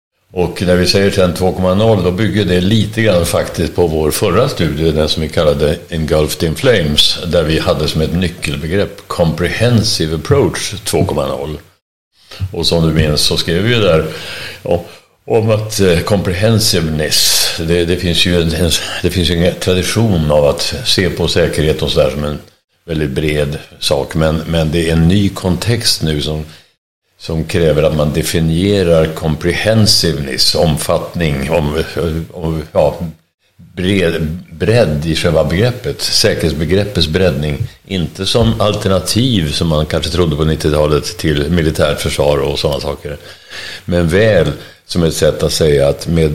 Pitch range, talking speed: 80-95 Hz, 140 wpm